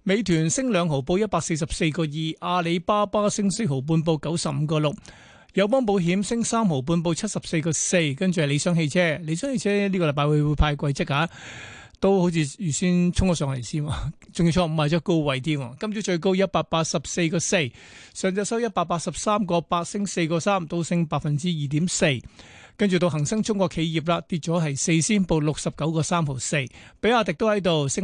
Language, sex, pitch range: Chinese, male, 155-190 Hz